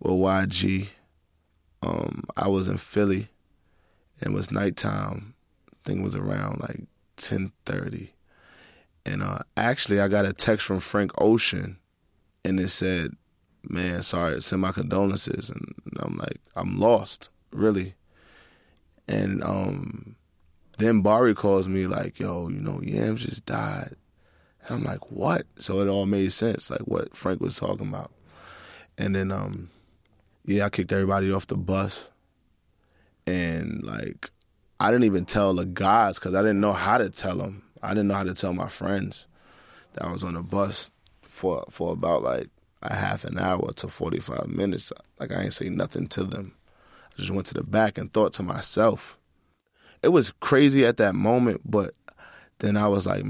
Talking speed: 165 wpm